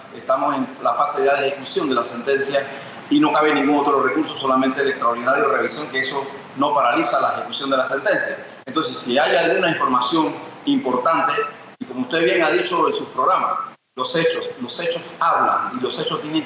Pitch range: 135-200 Hz